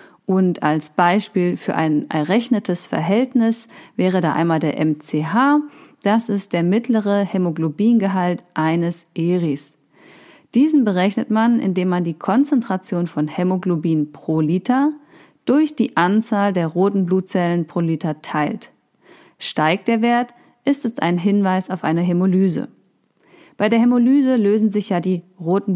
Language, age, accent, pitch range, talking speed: German, 40-59, German, 170-225 Hz, 135 wpm